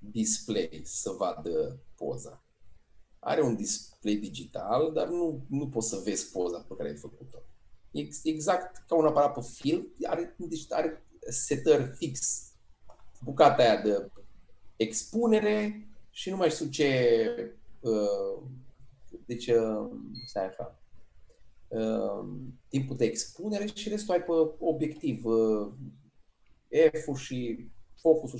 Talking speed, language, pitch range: 115 wpm, Romanian, 110-160 Hz